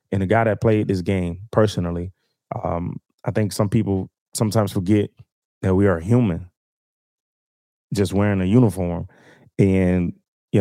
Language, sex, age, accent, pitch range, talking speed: English, male, 20-39, American, 100-120 Hz, 140 wpm